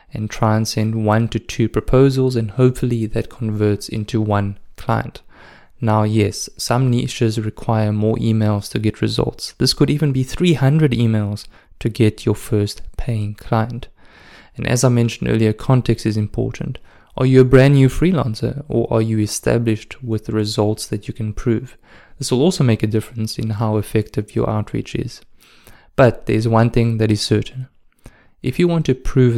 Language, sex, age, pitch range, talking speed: English, male, 20-39, 110-130 Hz, 175 wpm